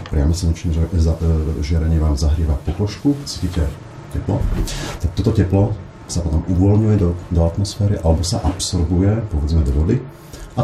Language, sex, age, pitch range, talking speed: Slovak, male, 40-59, 80-100 Hz, 150 wpm